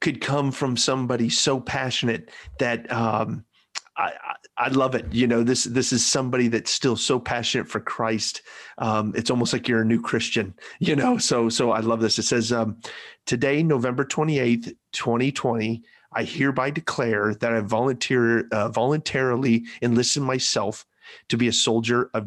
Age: 40-59